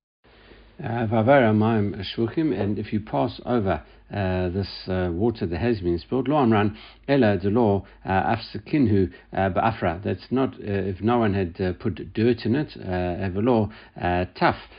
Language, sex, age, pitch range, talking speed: English, male, 60-79, 90-115 Hz, 145 wpm